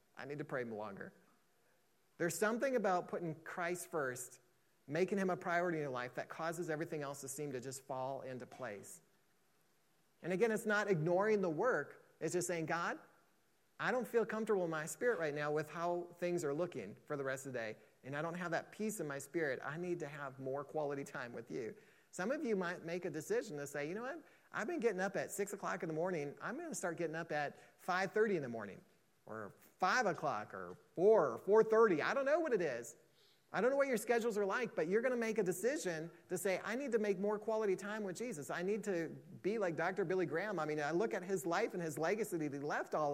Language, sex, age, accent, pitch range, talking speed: English, male, 30-49, American, 160-210 Hz, 240 wpm